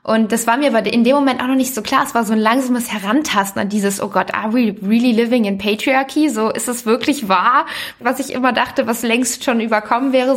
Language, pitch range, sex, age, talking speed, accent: German, 210-245 Hz, female, 20-39, 250 wpm, German